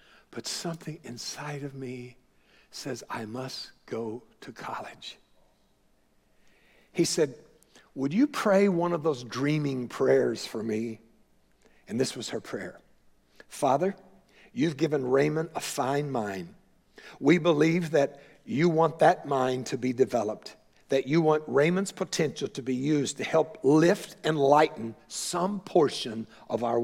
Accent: American